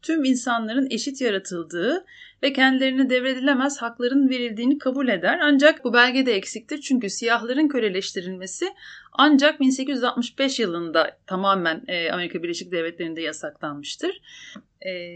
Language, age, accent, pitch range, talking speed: Turkish, 30-49, native, 215-275 Hz, 110 wpm